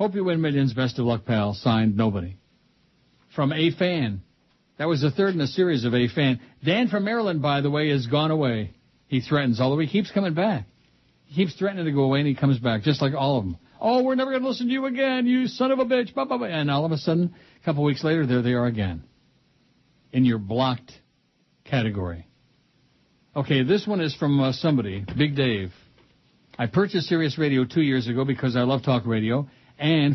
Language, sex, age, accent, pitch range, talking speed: English, male, 60-79, American, 130-165 Hz, 210 wpm